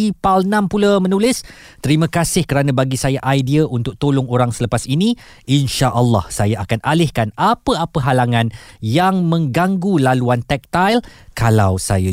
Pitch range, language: 110-155 Hz, Malay